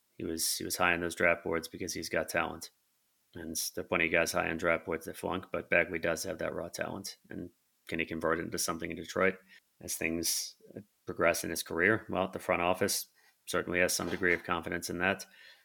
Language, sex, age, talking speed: English, male, 30-49, 225 wpm